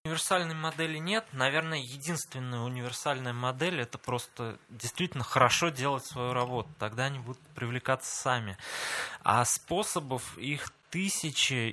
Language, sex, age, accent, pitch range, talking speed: Russian, male, 20-39, native, 120-145 Hz, 120 wpm